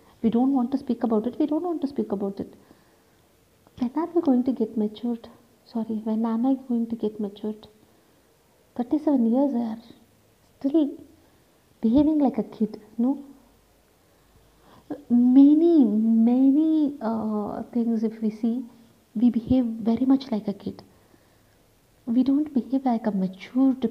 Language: Tamil